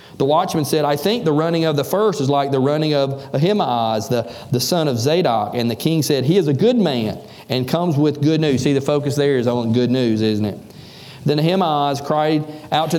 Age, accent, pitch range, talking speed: 40-59, American, 135-165 Hz, 230 wpm